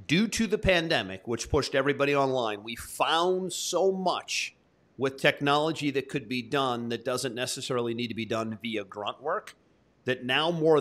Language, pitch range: English, 115-150 Hz